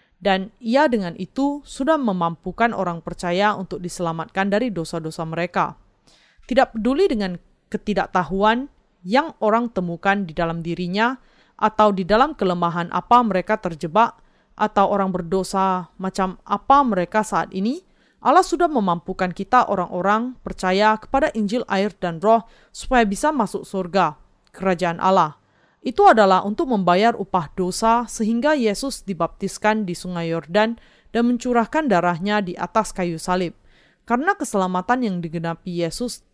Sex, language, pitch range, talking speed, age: female, Indonesian, 180-235 Hz, 130 wpm, 30-49